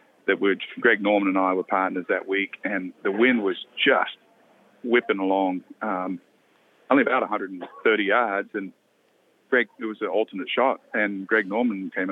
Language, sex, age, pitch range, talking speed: English, male, 40-59, 95-125 Hz, 160 wpm